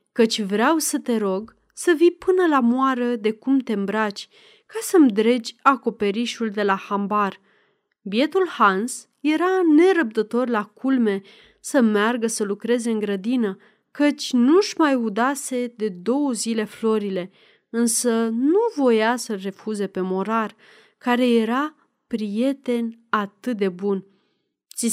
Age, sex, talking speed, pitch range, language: 30-49, female, 130 wpm, 210-275 Hz, Romanian